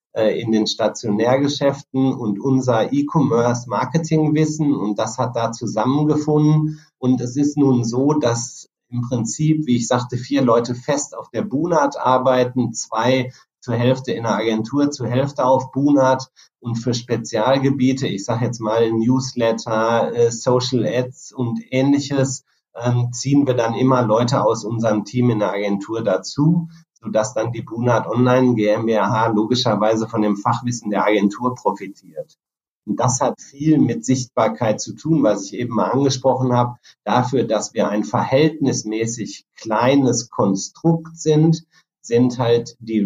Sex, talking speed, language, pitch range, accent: male, 140 wpm, German, 115-140 Hz, German